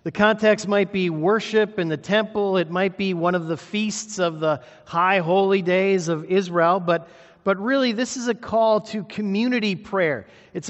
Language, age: English, 50-69